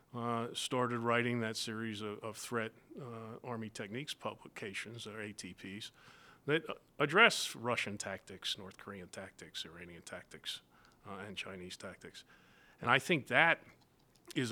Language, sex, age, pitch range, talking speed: English, male, 40-59, 105-120 Hz, 135 wpm